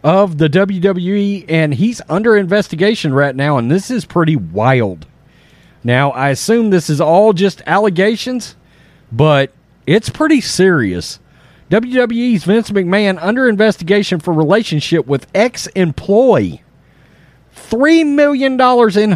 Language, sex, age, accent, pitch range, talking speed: English, male, 40-59, American, 155-215 Hz, 120 wpm